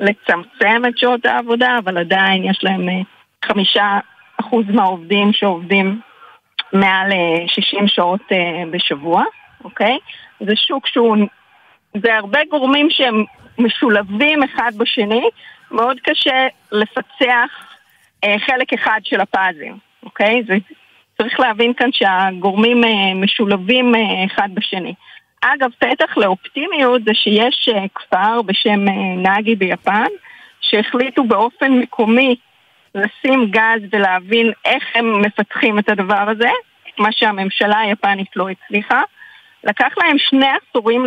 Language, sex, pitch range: Hebrew, female, 200-250 Hz